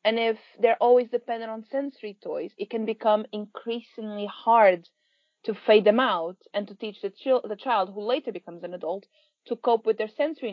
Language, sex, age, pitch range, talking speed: English, female, 20-39, 200-260 Hz, 195 wpm